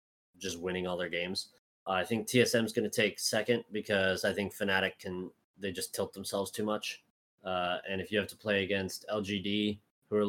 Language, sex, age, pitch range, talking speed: English, male, 20-39, 90-105 Hz, 210 wpm